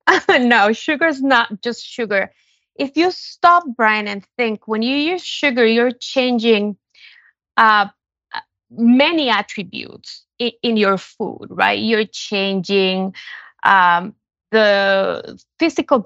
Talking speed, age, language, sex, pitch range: 110 wpm, 20-39, English, female, 205-270 Hz